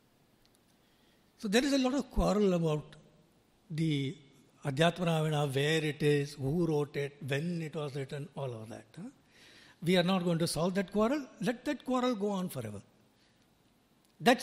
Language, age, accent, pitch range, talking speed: English, 60-79, Indian, 160-240 Hz, 160 wpm